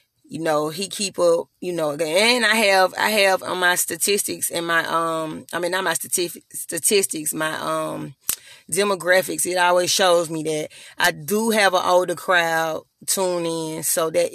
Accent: American